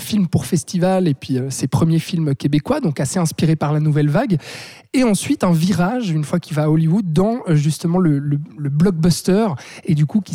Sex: male